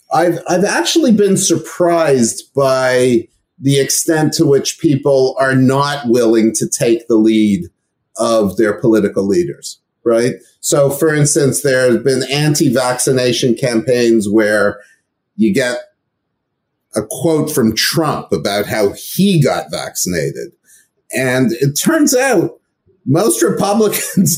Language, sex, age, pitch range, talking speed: English, male, 40-59, 130-180 Hz, 120 wpm